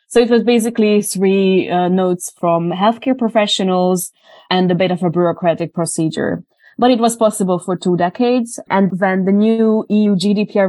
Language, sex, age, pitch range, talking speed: English, female, 20-39, 175-205 Hz, 170 wpm